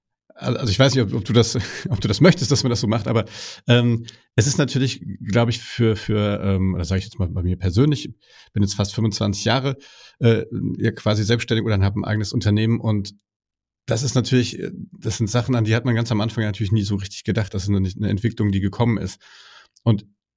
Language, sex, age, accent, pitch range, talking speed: German, male, 40-59, German, 105-125 Hz, 230 wpm